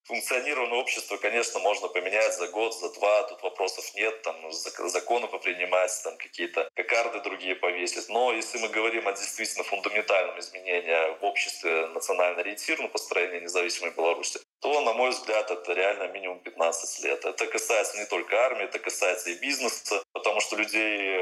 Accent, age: native, 20-39